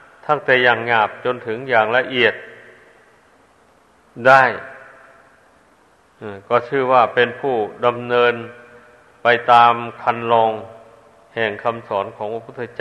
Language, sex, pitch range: Thai, male, 115-130 Hz